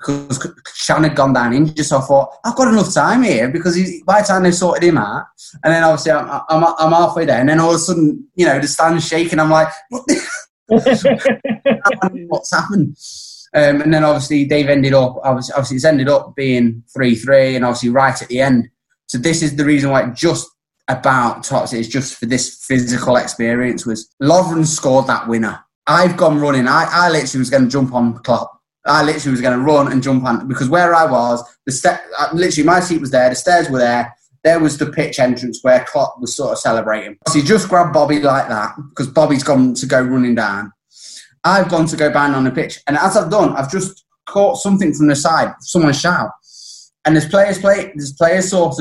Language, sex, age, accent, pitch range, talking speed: English, male, 20-39, British, 135-180 Hz, 220 wpm